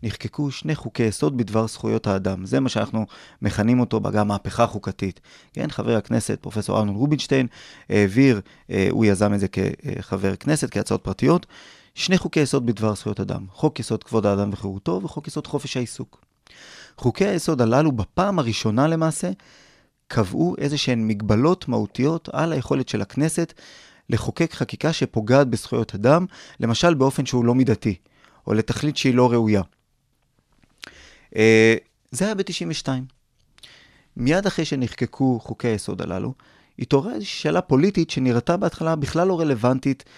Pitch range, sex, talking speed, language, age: 110-145 Hz, male, 135 wpm, Hebrew, 30-49